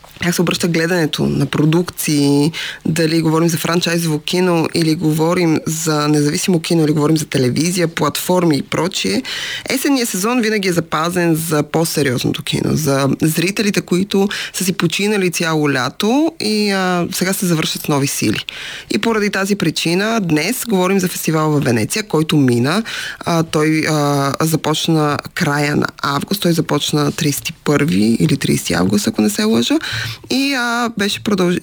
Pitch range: 150-180 Hz